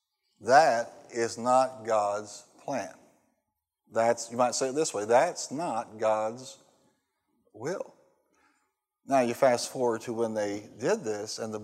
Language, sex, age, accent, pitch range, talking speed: English, male, 50-69, American, 115-145 Hz, 140 wpm